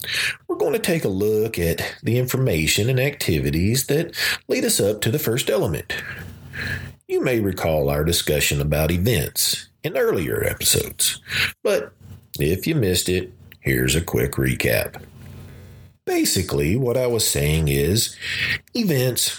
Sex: male